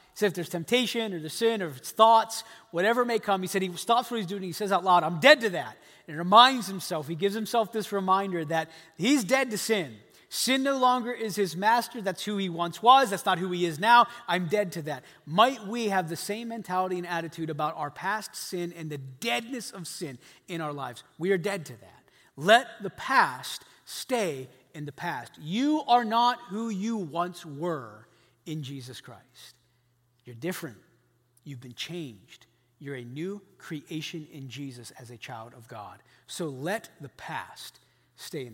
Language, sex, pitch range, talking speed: English, male, 150-220 Hz, 200 wpm